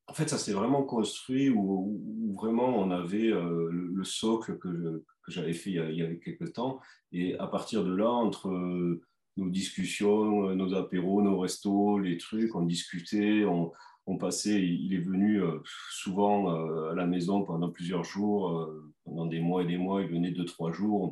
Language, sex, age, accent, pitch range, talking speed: French, male, 40-59, French, 90-115 Hz, 190 wpm